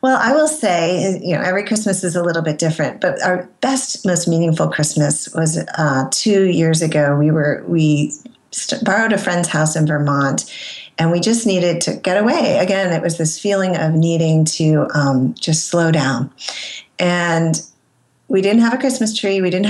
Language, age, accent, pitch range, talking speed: English, 40-59, American, 160-195 Hz, 185 wpm